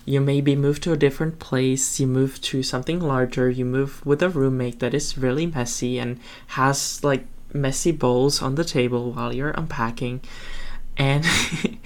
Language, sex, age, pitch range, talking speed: English, male, 10-29, 120-150 Hz, 165 wpm